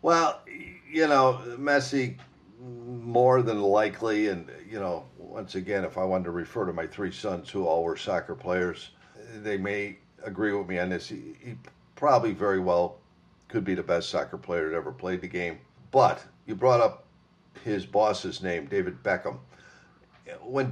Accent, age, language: American, 50-69, English